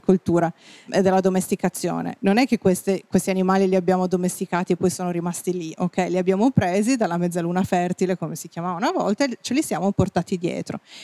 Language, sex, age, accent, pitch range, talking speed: Italian, female, 40-59, native, 175-210 Hz, 190 wpm